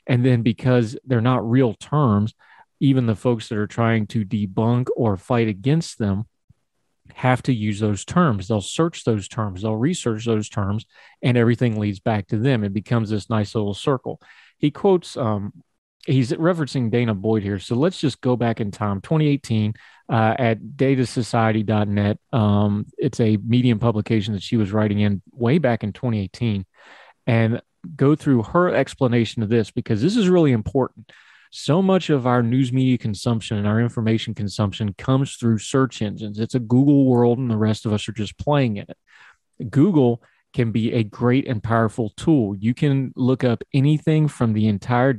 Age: 30-49